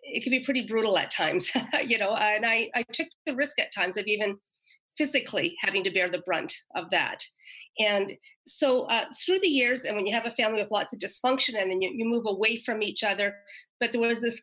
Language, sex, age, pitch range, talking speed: English, female, 40-59, 200-255 Hz, 235 wpm